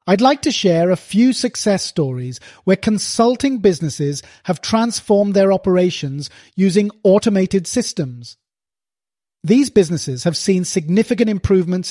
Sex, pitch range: male, 160-215 Hz